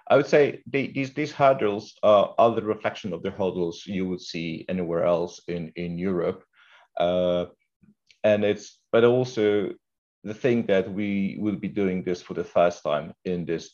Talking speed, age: 180 wpm, 40-59